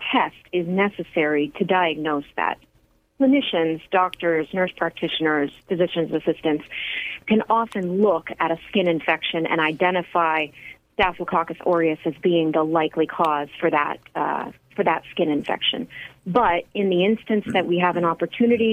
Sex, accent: female, American